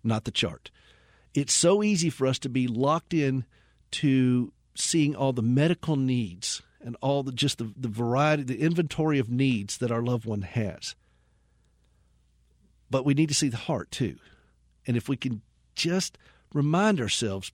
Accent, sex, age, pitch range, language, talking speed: American, male, 50-69, 110-150 Hz, English, 170 wpm